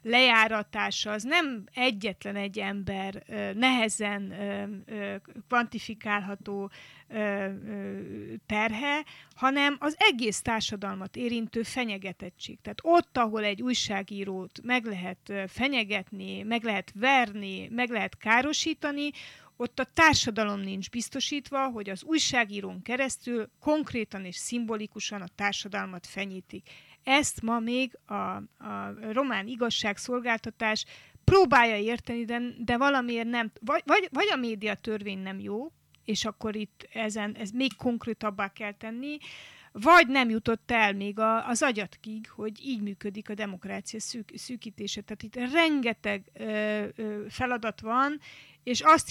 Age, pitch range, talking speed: 30-49, 205-245 Hz, 120 wpm